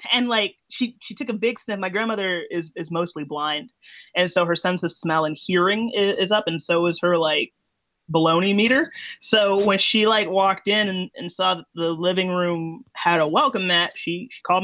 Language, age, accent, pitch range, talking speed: English, 20-39, American, 170-220 Hz, 215 wpm